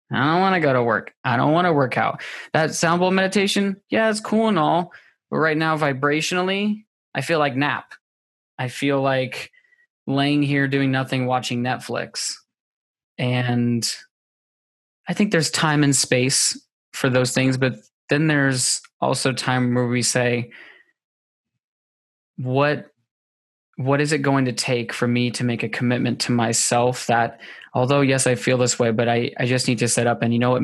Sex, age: male, 20-39